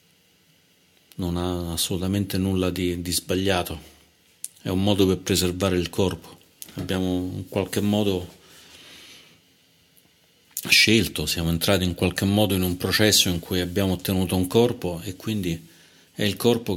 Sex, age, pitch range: male, 40-59, 90-105 Hz